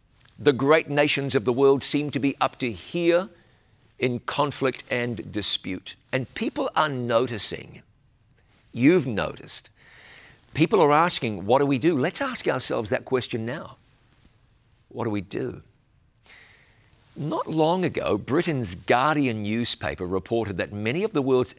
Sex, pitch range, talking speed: male, 115-155 Hz, 140 wpm